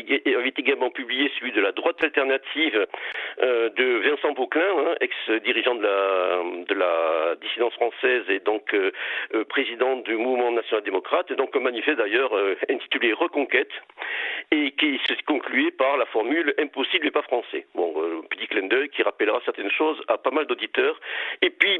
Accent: French